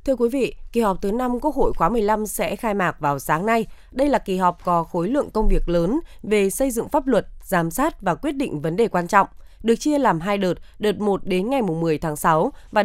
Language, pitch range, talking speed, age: Vietnamese, 175-245 Hz, 250 wpm, 20-39